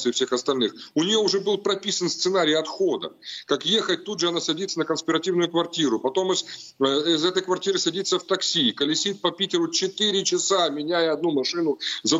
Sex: male